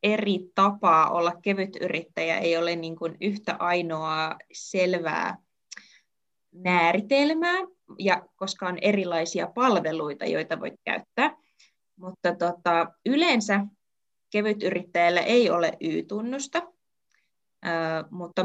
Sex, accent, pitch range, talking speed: female, native, 170-215 Hz, 90 wpm